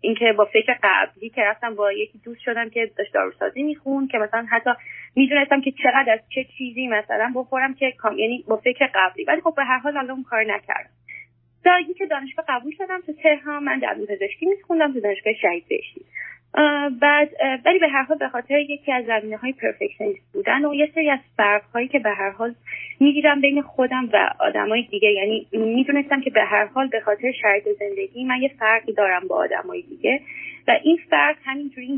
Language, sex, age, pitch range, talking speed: Persian, female, 30-49, 215-295 Hz, 195 wpm